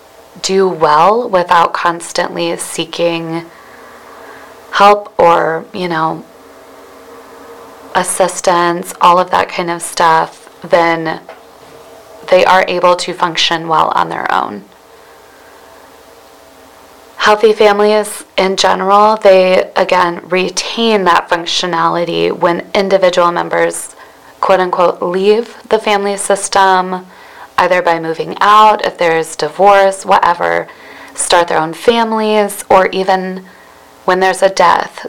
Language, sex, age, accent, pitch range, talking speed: English, female, 20-39, American, 165-195 Hz, 105 wpm